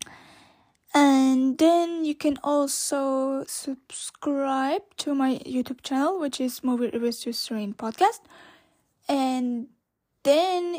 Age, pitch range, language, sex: 10-29, 250-310 Hz, English, female